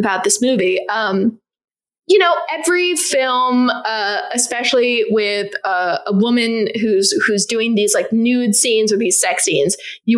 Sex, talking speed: female, 155 wpm